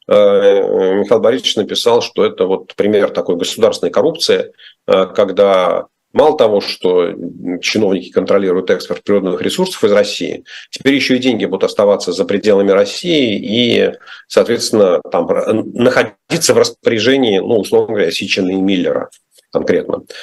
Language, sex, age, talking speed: Russian, male, 40-59, 120 wpm